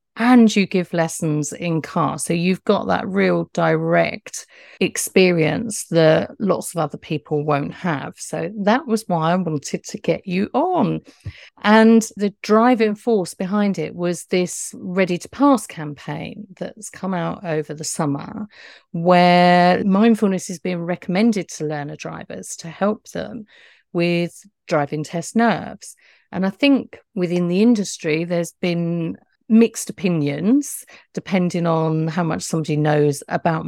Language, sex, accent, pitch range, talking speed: English, female, British, 160-205 Hz, 145 wpm